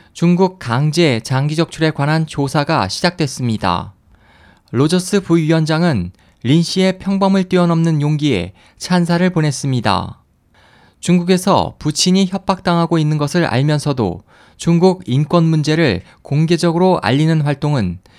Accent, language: native, Korean